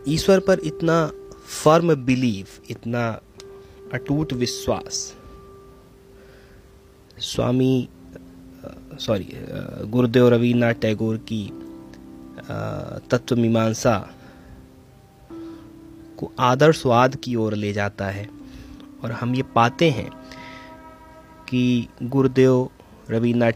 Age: 30-49